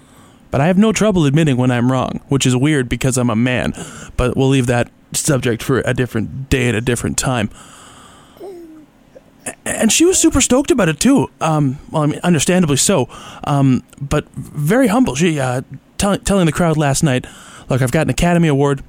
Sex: male